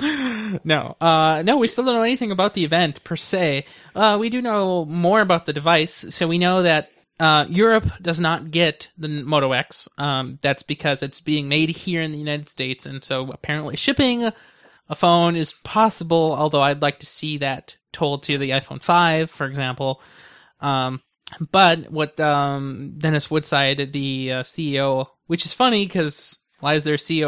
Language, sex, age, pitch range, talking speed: English, male, 20-39, 140-180 Hz, 185 wpm